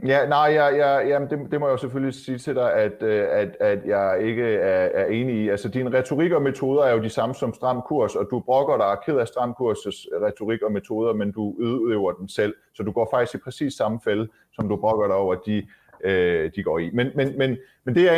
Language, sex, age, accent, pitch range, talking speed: Danish, male, 30-49, native, 105-145 Hz, 240 wpm